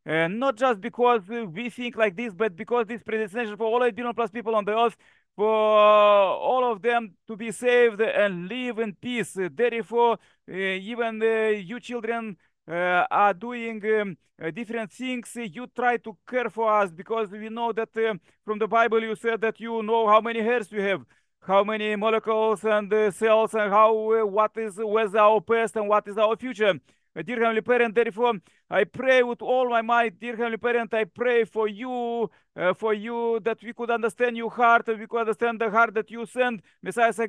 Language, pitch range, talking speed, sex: English, 215-235 Hz, 205 wpm, male